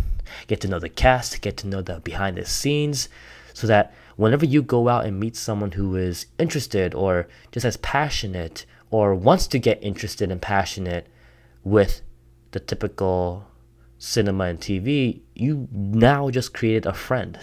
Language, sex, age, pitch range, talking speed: English, male, 20-39, 95-115 Hz, 160 wpm